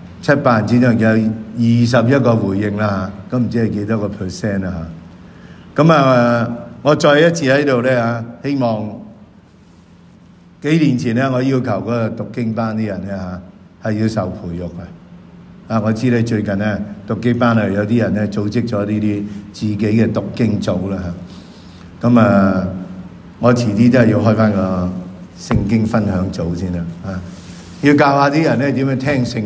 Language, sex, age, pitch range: English, male, 50-69, 100-125 Hz